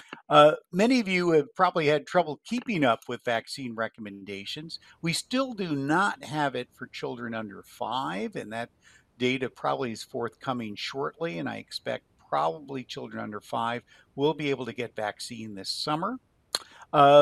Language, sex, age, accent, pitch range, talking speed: English, male, 50-69, American, 125-165 Hz, 160 wpm